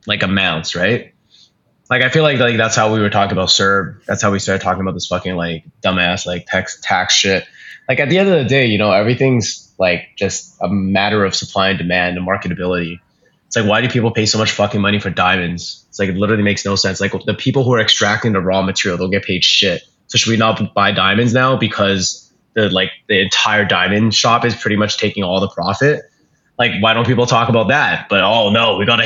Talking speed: 235 wpm